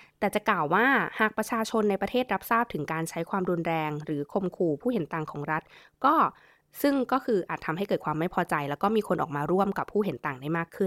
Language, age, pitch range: Thai, 20-39, 160-200 Hz